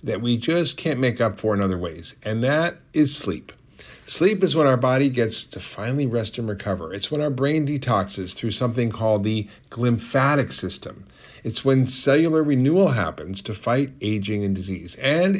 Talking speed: 185 wpm